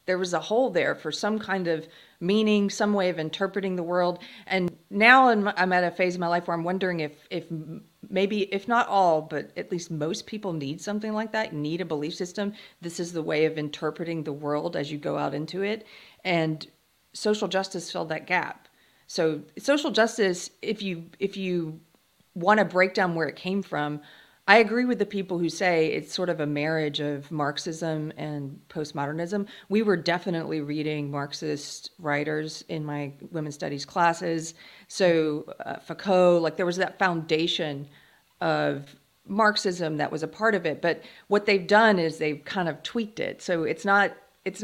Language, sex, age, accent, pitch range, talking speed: English, female, 40-59, American, 155-200 Hz, 190 wpm